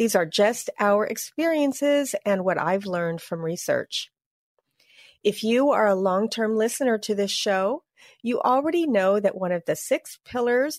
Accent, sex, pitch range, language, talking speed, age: American, female, 200-265 Hz, English, 160 wpm, 40-59